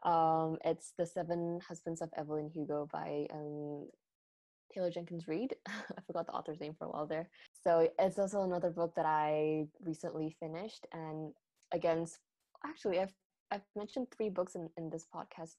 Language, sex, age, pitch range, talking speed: English, female, 10-29, 150-175 Hz, 165 wpm